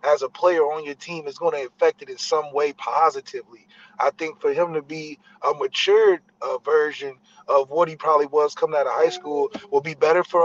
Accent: American